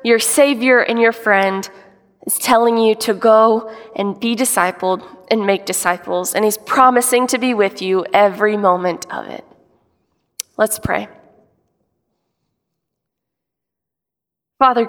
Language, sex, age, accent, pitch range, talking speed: English, female, 20-39, American, 200-240 Hz, 120 wpm